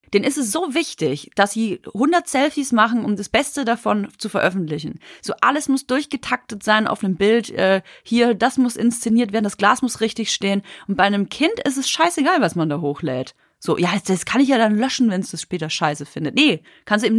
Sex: female